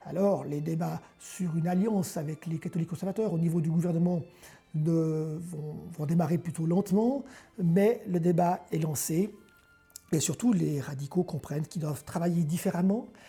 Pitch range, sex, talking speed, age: 160-190 Hz, male, 145 wpm, 50-69